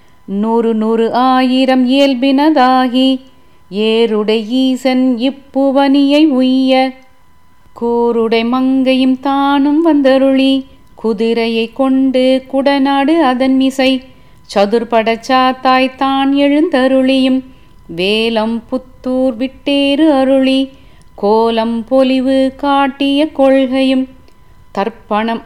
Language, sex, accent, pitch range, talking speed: Tamil, female, native, 240-270 Hz, 70 wpm